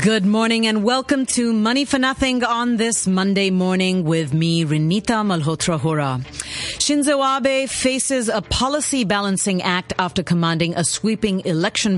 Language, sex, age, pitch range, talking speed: English, female, 30-49, 160-225 Hz, 145 wpm